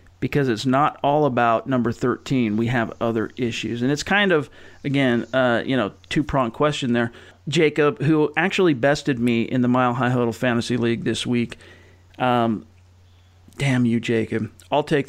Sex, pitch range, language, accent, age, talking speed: male, 115-145 Hz, English, American, 40-59, 165 wpm